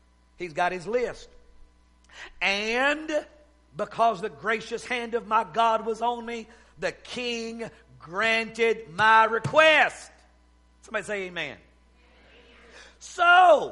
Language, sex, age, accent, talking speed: English, male, 50-69, American, 105 wpm